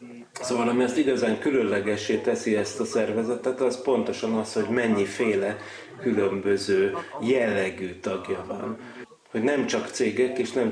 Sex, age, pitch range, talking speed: male, 30-49, 105-125 Hz, 135 wpm